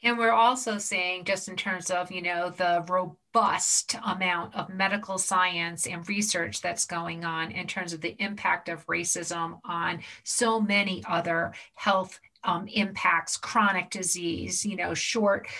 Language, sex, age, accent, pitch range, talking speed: English, female, 40-59, American, 180-220 Hz, 155 wpm